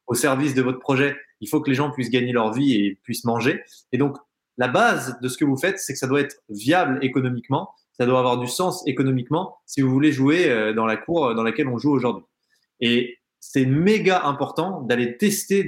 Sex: male